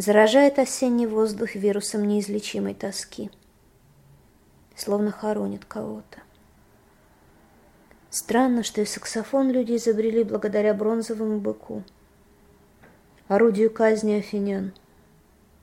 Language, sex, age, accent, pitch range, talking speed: Russian, female, 20-39, native, 200-245 Hz, 80 wpm